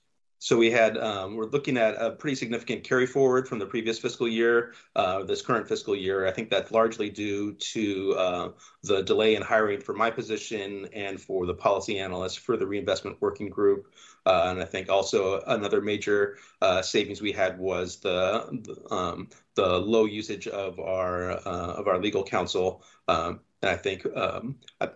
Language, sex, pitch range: English, male, 95-120 Hz